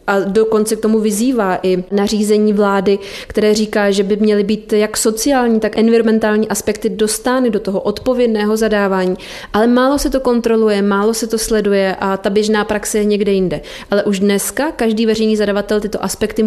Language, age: Czech, 30-49